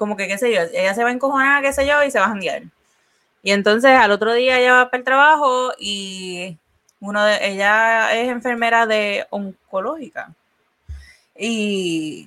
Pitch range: 180-235 Hz